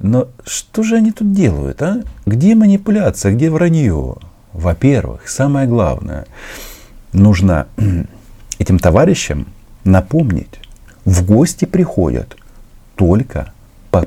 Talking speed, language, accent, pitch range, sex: 100 wpm, Russian, native, 90-115 Hz, male